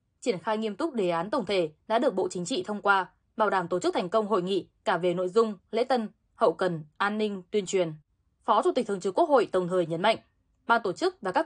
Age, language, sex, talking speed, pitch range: 10-29, Vietnamese, female, 265 wpm, 175-225 Hz